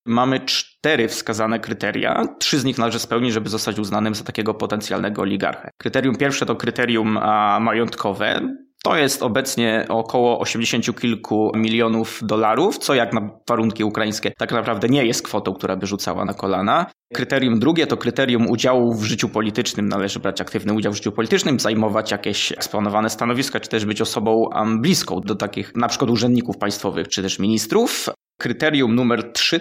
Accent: native